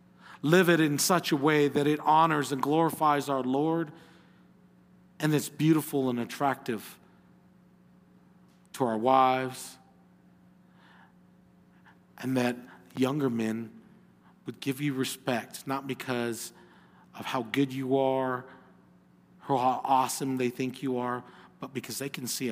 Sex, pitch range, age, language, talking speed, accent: male, 120-180 Hz, 40-59, English, 130 wpm, American